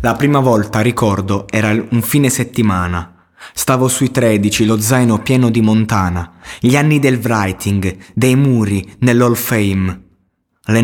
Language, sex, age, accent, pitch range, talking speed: Italian, male, 20-39, native, 95-120 Hz, 140 wpm